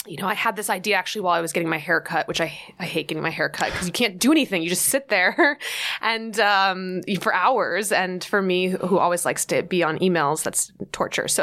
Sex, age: female, 20-39